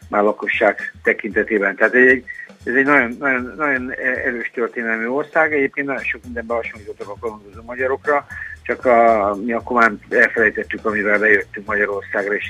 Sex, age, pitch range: male, 60-79, 110-140 Hz